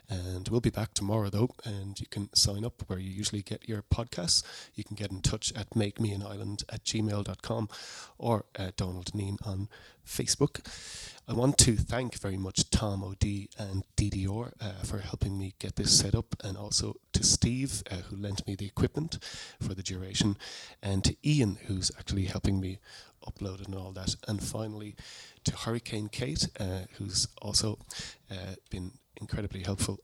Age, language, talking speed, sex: 30-49, English, 175 wpm, male